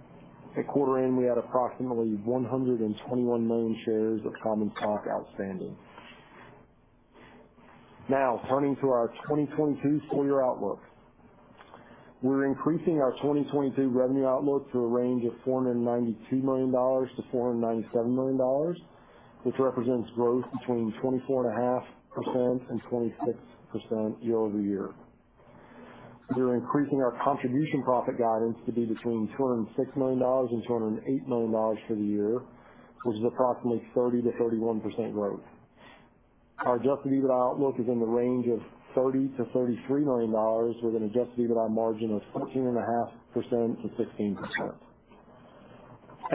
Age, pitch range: 40-59, 115-130 Hz